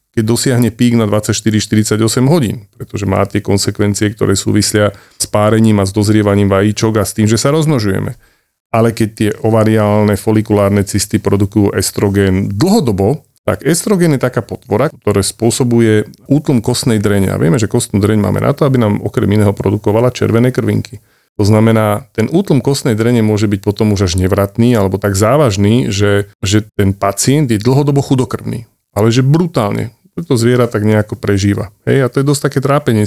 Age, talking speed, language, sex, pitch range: 40-59, 170 wpm, Slovak, male, 100-125 Hz